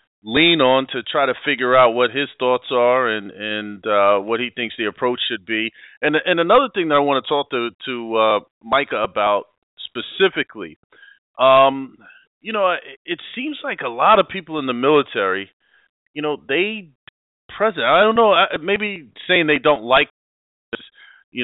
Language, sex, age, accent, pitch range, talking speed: English, male, 30-49, American, 120-155 Hz, 175 wpm